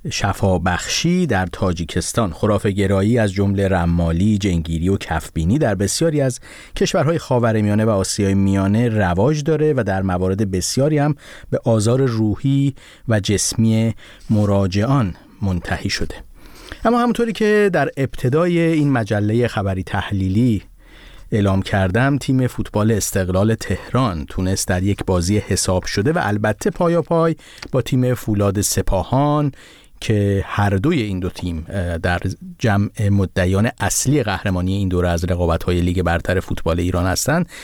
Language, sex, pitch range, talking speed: Persian, male, 95-125 Hz, 135 wpm